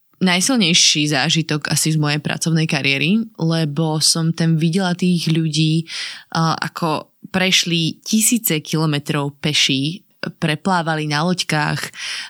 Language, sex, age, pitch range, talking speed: Slovak, female, 20-39, 155-175 Hz, 100 wpm